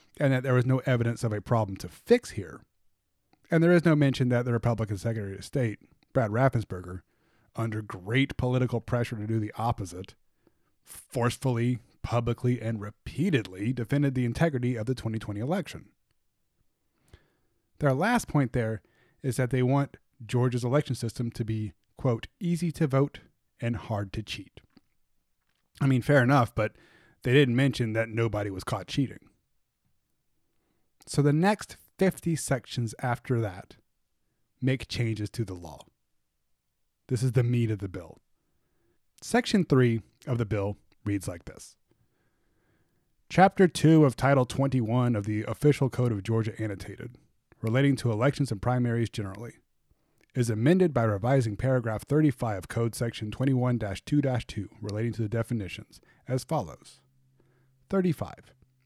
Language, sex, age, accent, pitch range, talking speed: English, male, 30-49, American, 110-135 Hz, 145 wpm